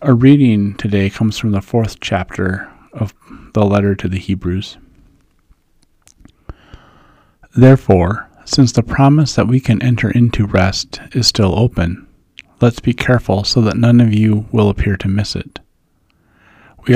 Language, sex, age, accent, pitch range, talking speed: English, male, 40-59, American, 100-120 Hz, 145 wpm